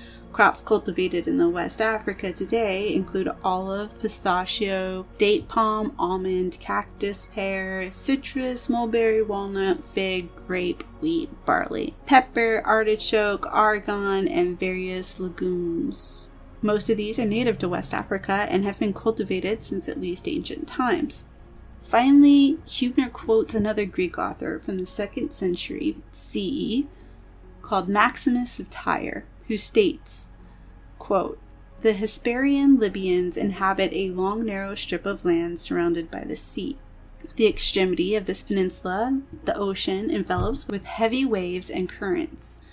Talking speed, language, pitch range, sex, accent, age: 125 wpm, English, 190-240 Hz, female, American, 30-49